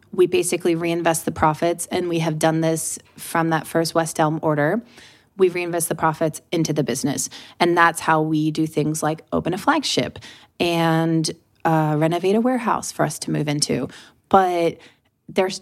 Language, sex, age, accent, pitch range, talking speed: English, female, 30-49, American, 160-190 Hz, 175 wpm